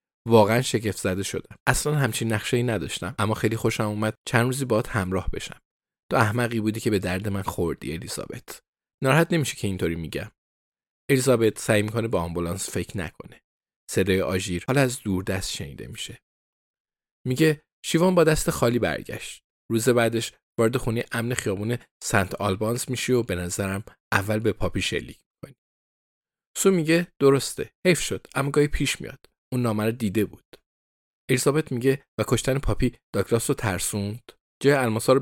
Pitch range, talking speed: 100-130 Hz, 150 wpm